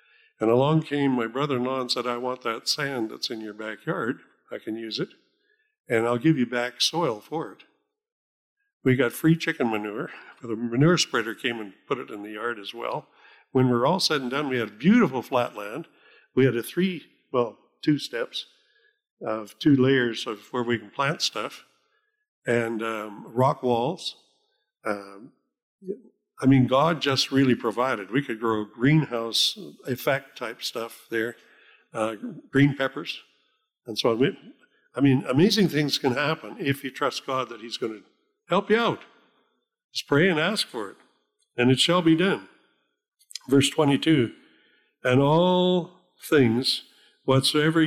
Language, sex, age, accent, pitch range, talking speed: English, male, 60-79, American, 120-165 Hz, 165 wpm